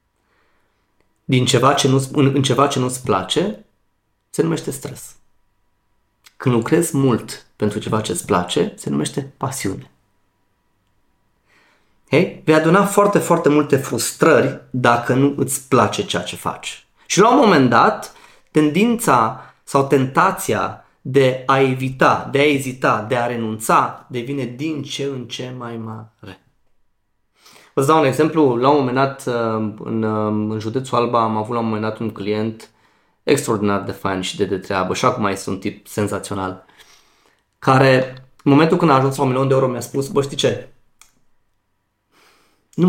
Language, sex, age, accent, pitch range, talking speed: Romanian, male, 30-49, native, 110-140 Hz, 155 wpm